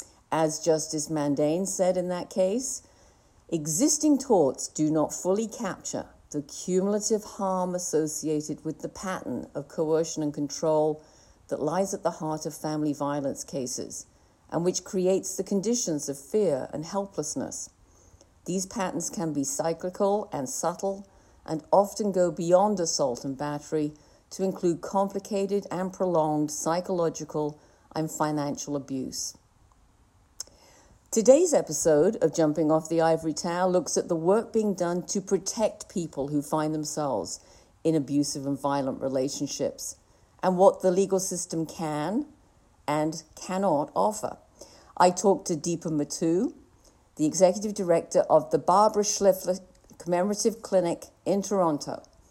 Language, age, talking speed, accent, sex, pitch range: English, 50-69, 130 wpm, British, female, 150-190 Hz